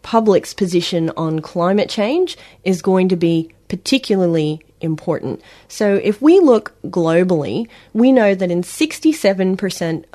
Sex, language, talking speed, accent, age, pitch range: female, English, 125 wpm, Australian, 30-49, 170-220 Hz